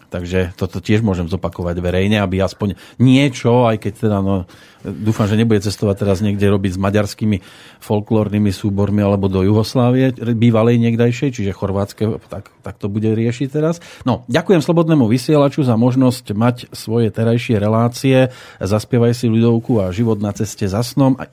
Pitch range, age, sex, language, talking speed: 100-125 Hz, 40-59, male, Slovak, 160 wpm